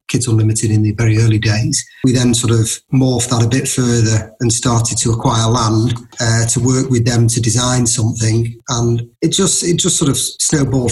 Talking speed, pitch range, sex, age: 205 wpm, 110-130 Hz, male, 30-49